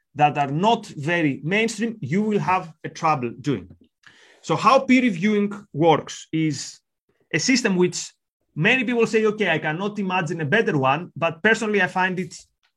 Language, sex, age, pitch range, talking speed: English, male, 30-49, 160-215 Hz, 165 wpm